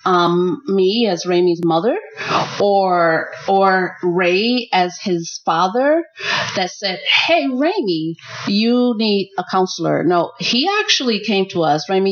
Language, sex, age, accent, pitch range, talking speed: English, female, 30-49, American, 180-225 Hz, 130 wpm